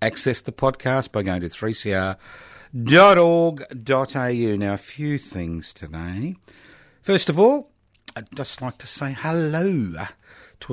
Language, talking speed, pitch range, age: English, 125 wpm, 100-135 Hz, 50-69